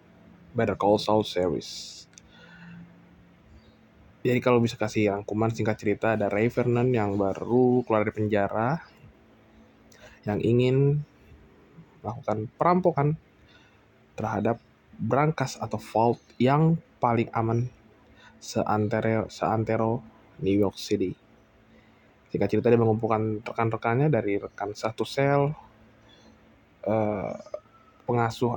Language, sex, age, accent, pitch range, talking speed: English, male, 20-39, Indonesian, 100-120 Hz, 95 wpm